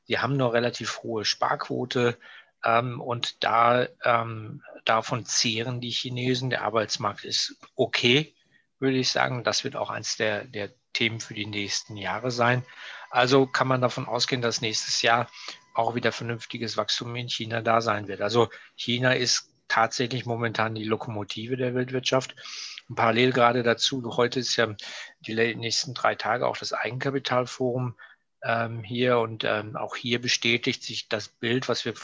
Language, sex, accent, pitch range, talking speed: German, male, German, 115-125 Hz, 155 wpm